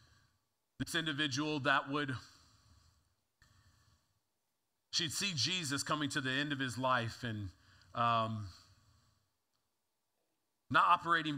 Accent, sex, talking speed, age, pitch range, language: American, male, 95 wpm, 40-59, 105-140 Hz, English